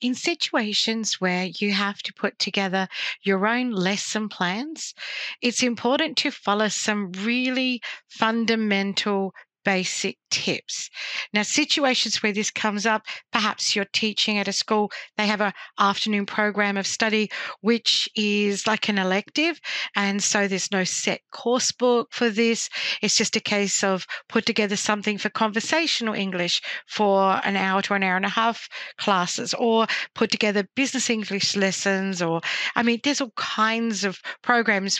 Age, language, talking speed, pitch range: 50-69, English, 155 wpm, 200-240 Hz